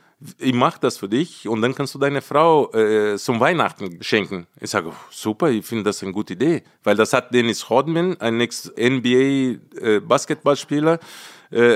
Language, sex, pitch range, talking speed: German, male, 110-145 Hz, 170 wpm